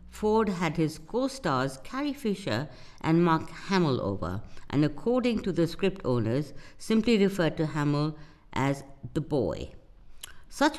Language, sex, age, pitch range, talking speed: English, female, 60-79, 125-195 Hz, 135 wpm